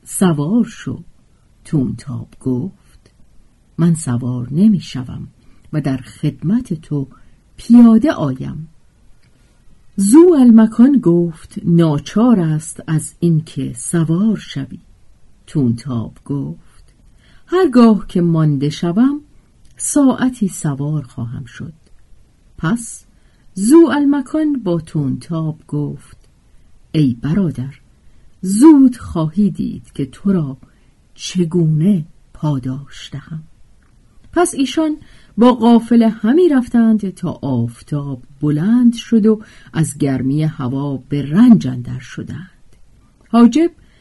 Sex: female